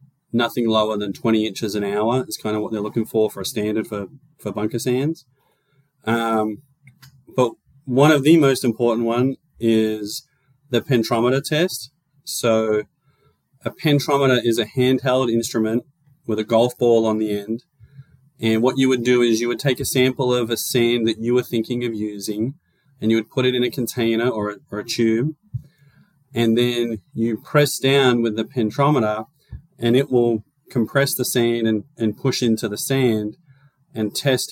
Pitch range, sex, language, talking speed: 110-135 Hz, male, English, 175 wpm